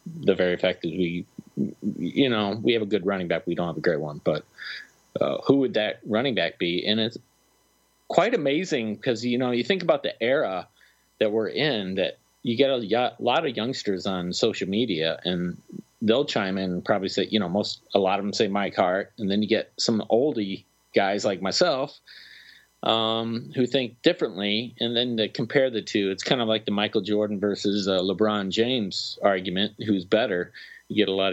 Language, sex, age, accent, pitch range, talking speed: English, male, 30-49, American, 95-115 Hz, 205 wpm